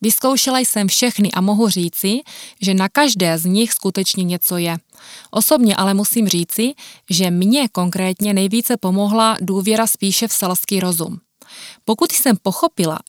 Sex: female